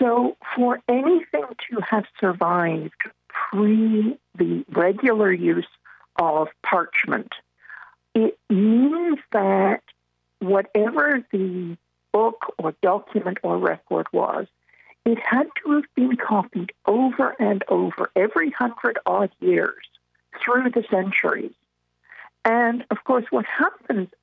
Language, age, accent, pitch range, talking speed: English, 60-79, American, 175-255 Hz, 110 wpm